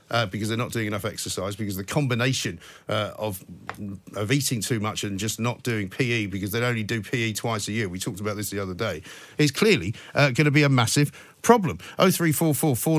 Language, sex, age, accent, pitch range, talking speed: English, male, 50-69, British, 110-145 Hz, 230 wpm